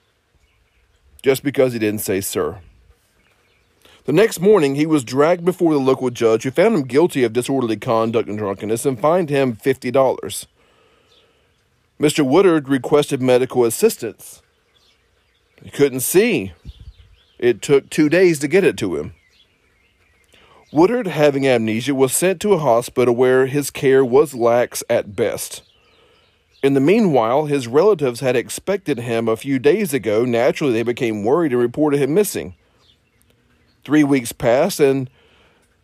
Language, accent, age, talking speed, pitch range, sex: English, American, 40-59, 140 wpm, 115-150 Hz, male